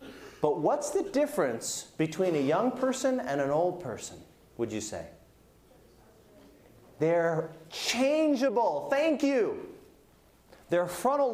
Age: 30-49